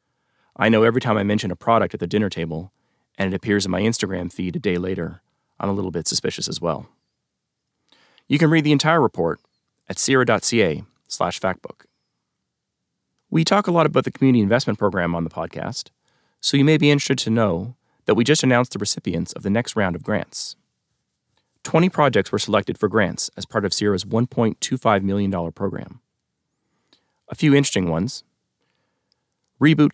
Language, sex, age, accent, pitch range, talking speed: English, male, 30-49, American, 100-140 Hz, 175 wpm